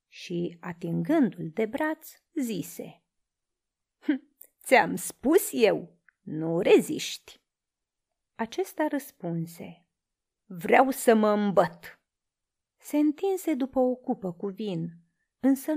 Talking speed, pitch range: 95 wpm, 180-290 Hz